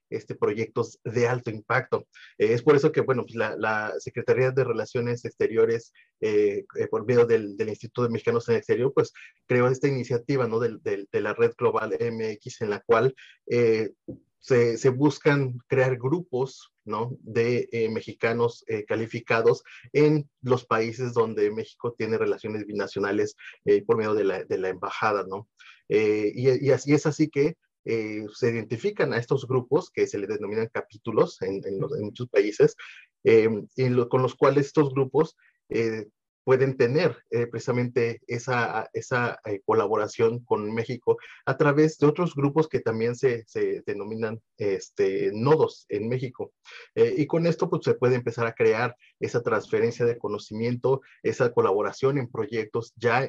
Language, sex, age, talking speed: Spanish, male, 30-49, 170 wpm